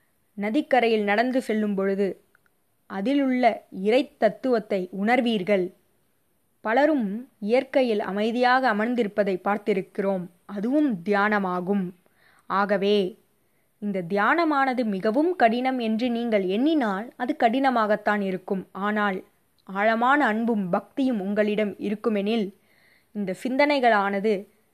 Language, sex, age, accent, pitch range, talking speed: Tamil, female, 20-39, native, 195-245 Hz, 80 wpm